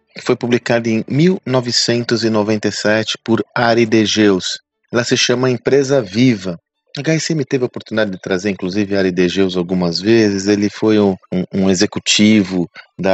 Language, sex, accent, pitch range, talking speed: Portuguese, male, Brazilian, 95-125 Hz, 150 wpm